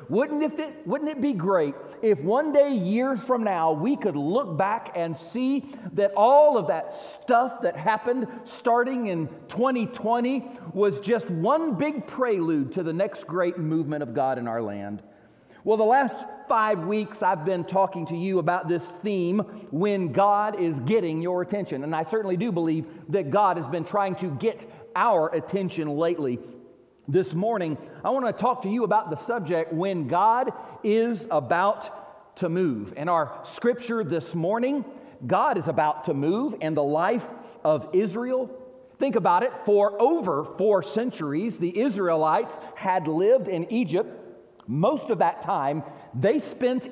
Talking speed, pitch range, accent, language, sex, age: 165 wpm, 170-240 Hz, American, English, male, 40-59